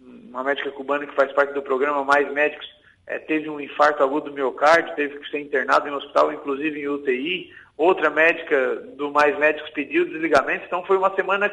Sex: male